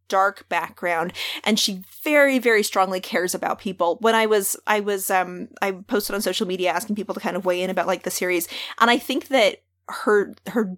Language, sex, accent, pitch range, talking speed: English, female, American, 185-220 Hz, 210 wpm